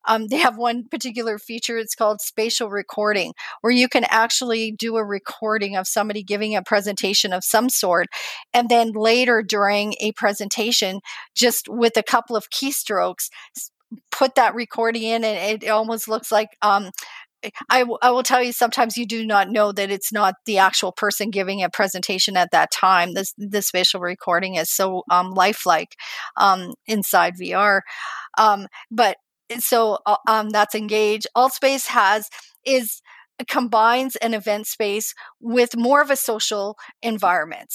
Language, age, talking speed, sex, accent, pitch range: English, 40-59, 160 wpm, female, American, 205-240 Hz